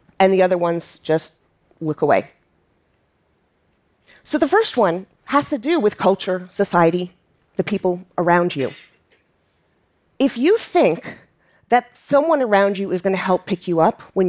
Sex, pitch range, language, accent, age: female, 170-225 Hz, Japanese, American, 40-59